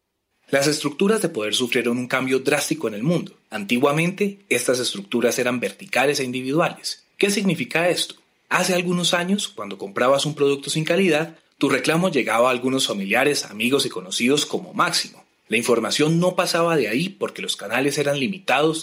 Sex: male